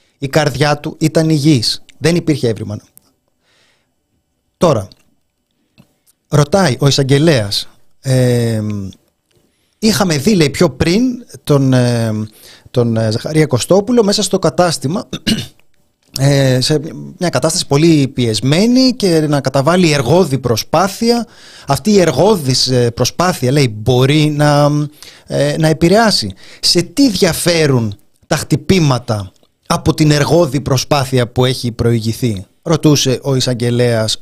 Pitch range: 115-160 Hz